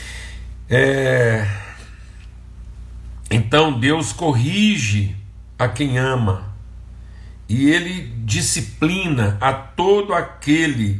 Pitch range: 100-150 Hz